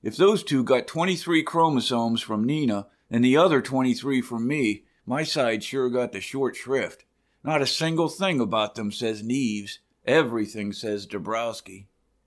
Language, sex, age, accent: English, male, 50-69, American